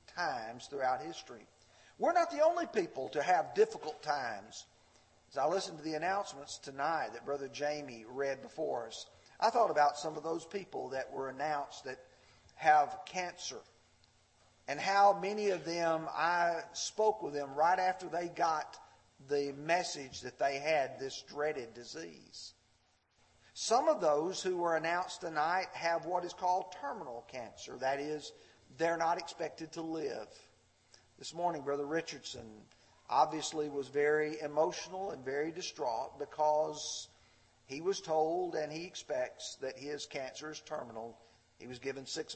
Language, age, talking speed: English, 50-69, 150 wpm